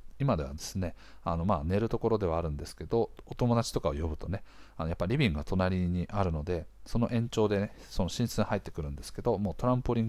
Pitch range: 85-115 Hz